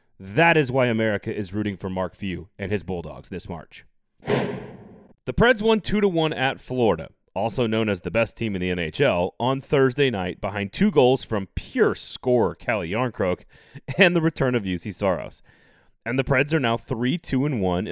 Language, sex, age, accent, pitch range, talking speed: English, male, 30-49, American, 100-140 Hz, 175 wpm